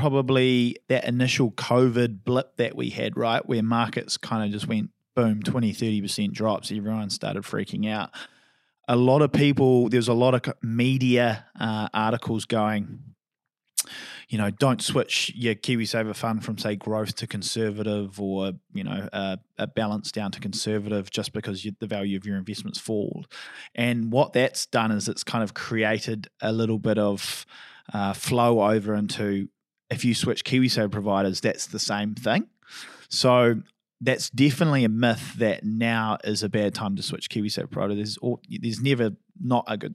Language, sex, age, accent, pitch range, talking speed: English, male, 20-39, Australian, 105-120 Hz, 165 wpm